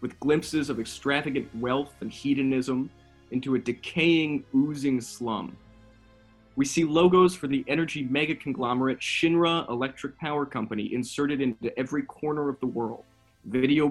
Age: 20-39